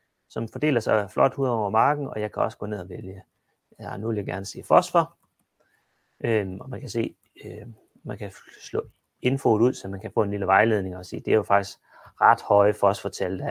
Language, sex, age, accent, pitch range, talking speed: Danish, male, 30-49, native, 105-130 Hz, 220 wpm